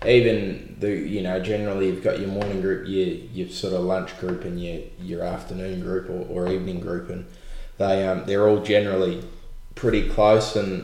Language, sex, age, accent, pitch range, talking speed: English, male, 20-39, Australian, 90-100 Hz, 190 wpm